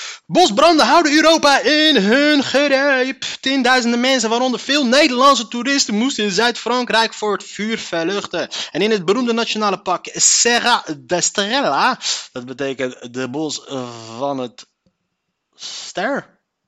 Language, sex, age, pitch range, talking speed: Dutch, male, 30-49, 155-235 Hz, 125 wpm